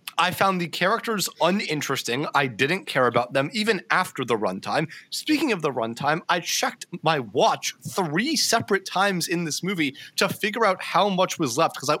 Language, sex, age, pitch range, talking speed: English, male, 30-49, 145-200 Hz, 180 wpm